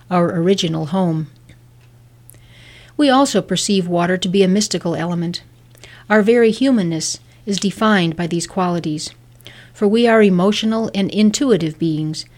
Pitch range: 155-200 Hz